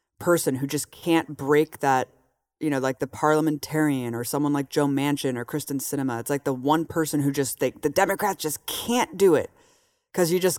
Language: English